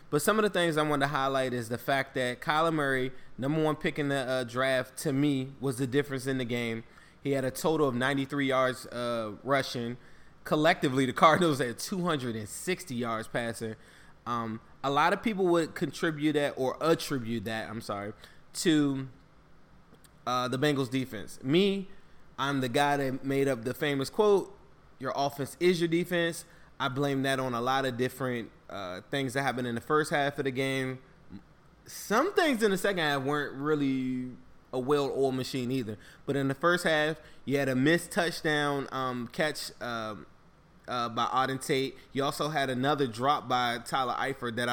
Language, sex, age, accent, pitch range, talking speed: English, male, 20-39, American, 130-150 Hz, 180 wpm